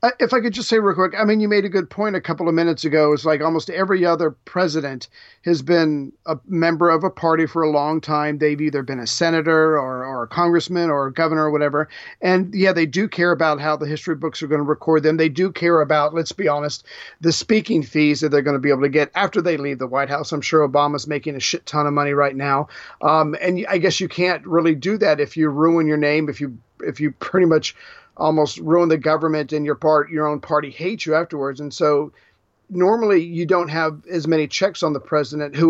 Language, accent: English, American